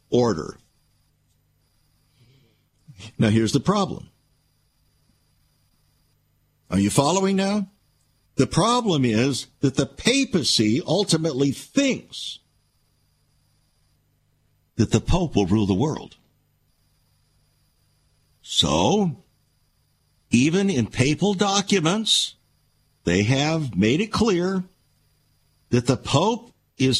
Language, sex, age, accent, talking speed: English, male, 60-79, American, 85 wpm